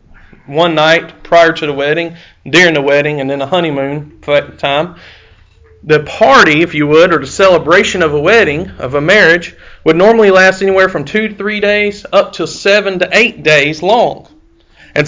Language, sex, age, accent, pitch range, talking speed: English, male, 40-59, American, 145-195 Hz, 180 wpm